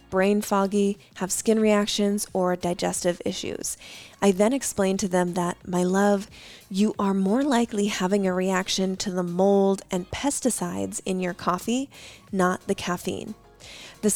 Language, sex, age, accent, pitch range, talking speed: English, female, 20-39, American, 185-210 Hz, 150 wpm